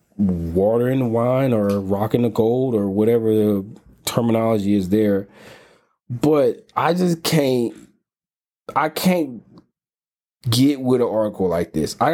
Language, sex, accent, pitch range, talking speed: English, male, American, 100-130 Hz, 130 wpm